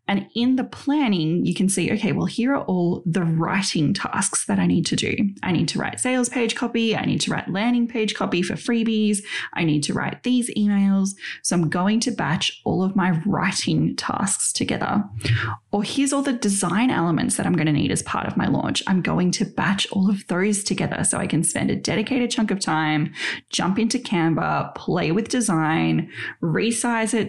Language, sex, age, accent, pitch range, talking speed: English, female, 20-39, Australian, 170-225 Hz, 205 wpm